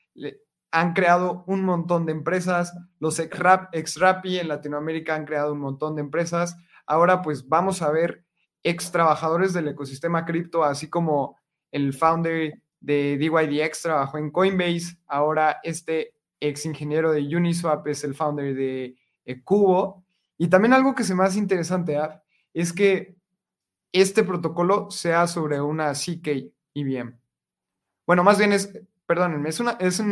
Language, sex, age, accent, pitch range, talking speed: Spanish, male, 20-39, Mexican, 150-175 Hz, 145 wpm